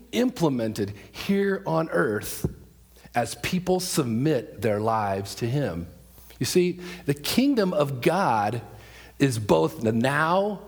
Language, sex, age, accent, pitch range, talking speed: English, male, 40-59, American, 105-155 Hz, 120 wpm